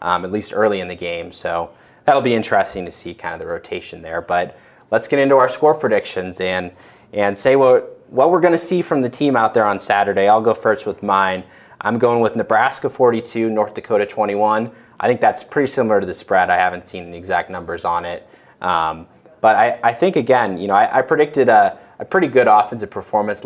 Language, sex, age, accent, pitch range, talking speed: English, male, 30-49, American, 95-125 Hz, 225 wpm